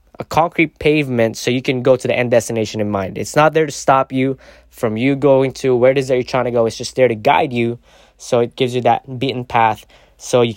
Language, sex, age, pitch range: English, male, 20-39, 120-145 Hz